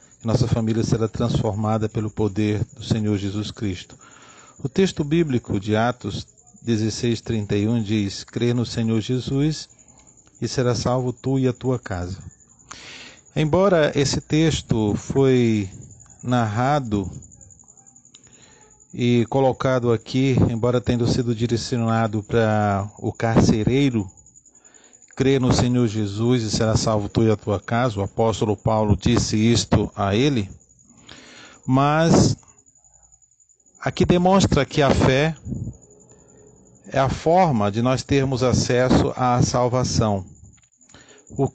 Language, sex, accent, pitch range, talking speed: Portuguese, male, Brazilian, 110-130 Hz, 115 wpm